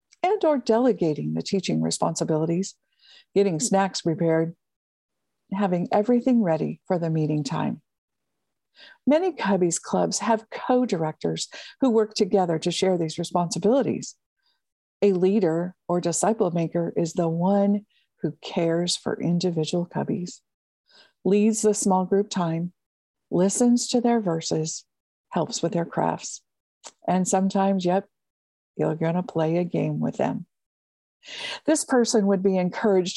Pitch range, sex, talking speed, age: 175-230 Hz, female, 125 wpm, 50-69